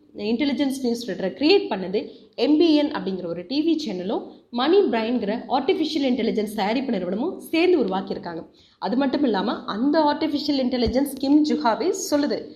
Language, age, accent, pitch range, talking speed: Tamil, 20-39, native, 215-310 Hz, 125 wpm